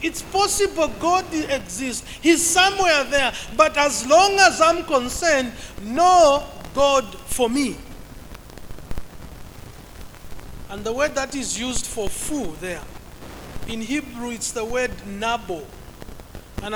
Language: English